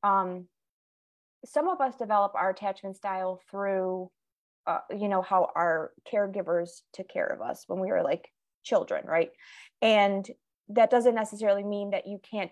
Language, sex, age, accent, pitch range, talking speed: English, female, 20-39, American, 185-220 Hz, 160 wpm